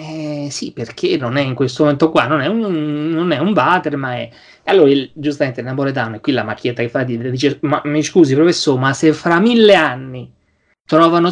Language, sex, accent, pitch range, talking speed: Italian, male, native, 130-200 Hz, 200 wpm